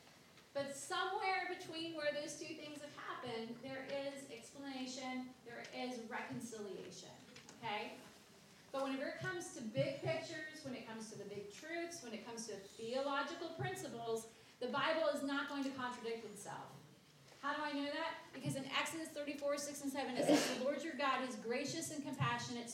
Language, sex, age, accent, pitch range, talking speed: English, female, 30-49, American, 225-290 Hz, 175 wpm